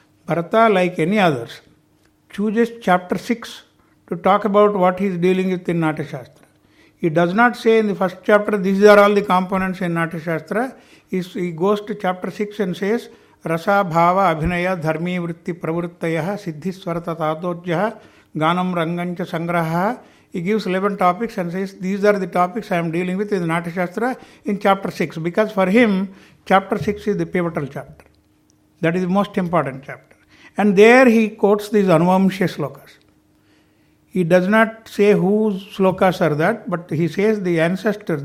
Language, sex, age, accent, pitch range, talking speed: English, male, 60-79, Indian, 165-205 Hz, 165 wpm